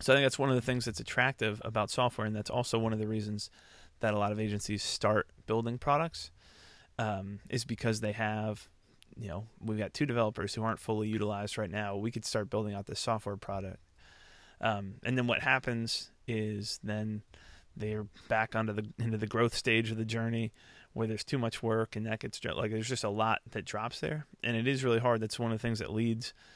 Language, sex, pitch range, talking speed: English, male, 105-115 Hz, 225 wpm